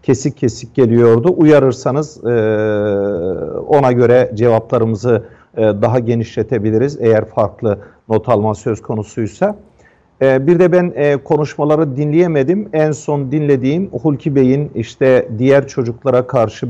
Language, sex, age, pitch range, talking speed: Turkish, male, 50-69, 110-140 Hz, 120 wpm